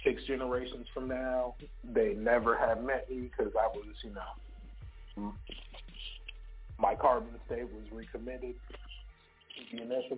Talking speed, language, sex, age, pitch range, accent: 130 wpm, English, male, 30-49, 105-130 Hz, American